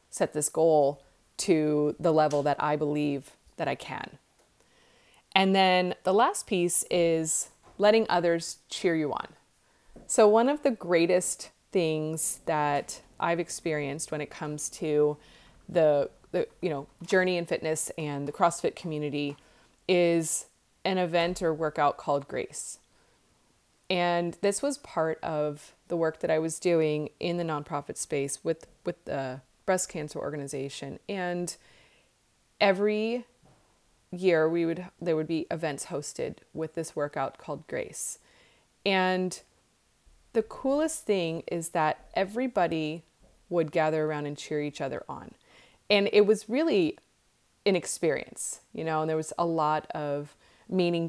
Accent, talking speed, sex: American, 140 wpm, female